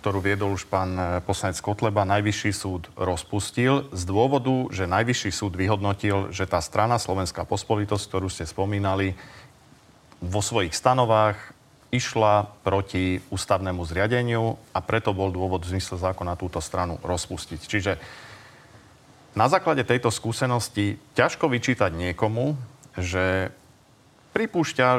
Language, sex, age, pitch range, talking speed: Slovak, male, 40-59, 95-120 Hz, 120 wpm